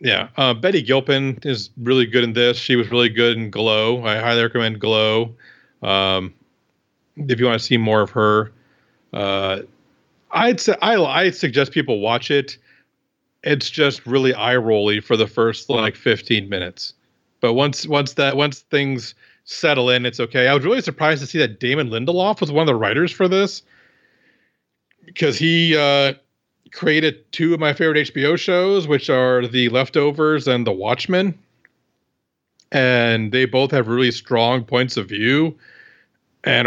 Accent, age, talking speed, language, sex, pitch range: American, 40-59, 165 wpm, English, male, 120-150 Hz